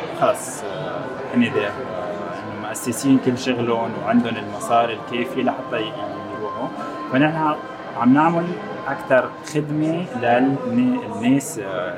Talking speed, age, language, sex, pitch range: 85 wpm, 20-39, Arabic, male, 115-170 Hz